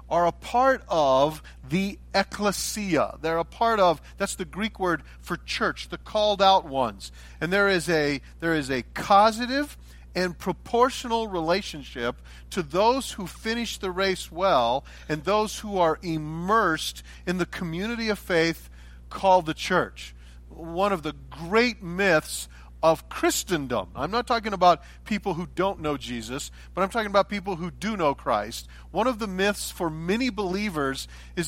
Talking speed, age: 160 wpm, 40-59